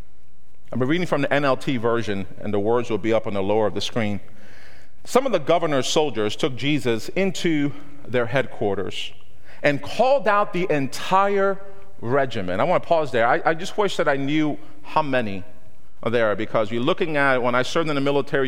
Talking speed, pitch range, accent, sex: 200 wpm, 115-170 Hz, American, male